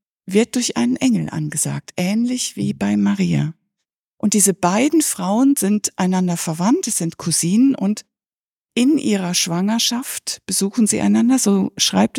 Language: German